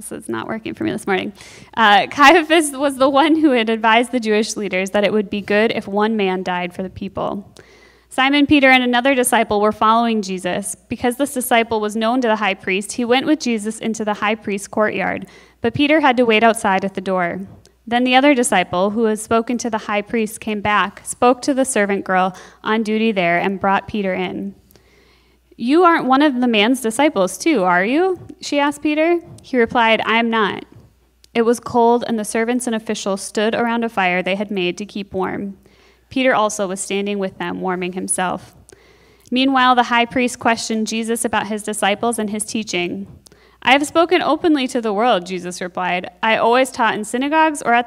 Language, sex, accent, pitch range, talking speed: English, female, American, 200-255 Hz, 205 wpm